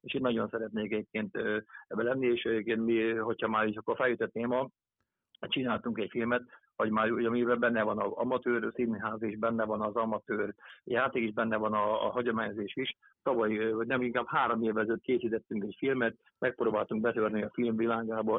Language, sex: Hungarian, male